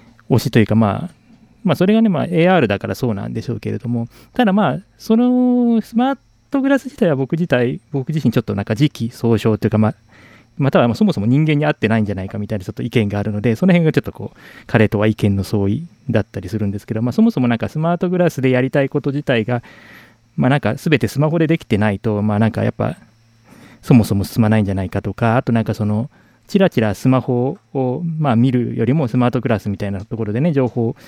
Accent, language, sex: native, Japanese, male